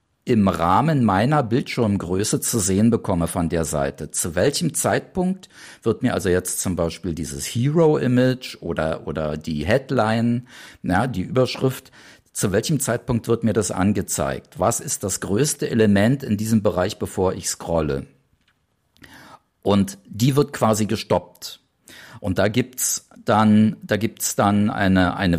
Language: German